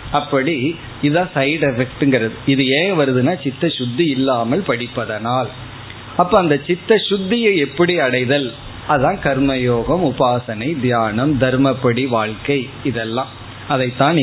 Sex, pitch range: male, 120-155 Hz